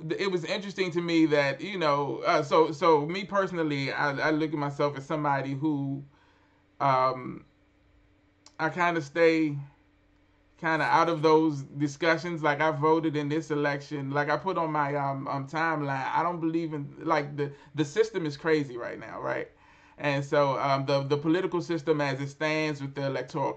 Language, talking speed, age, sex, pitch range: English, 185 wpm, 20-39, male, 140-160 Hz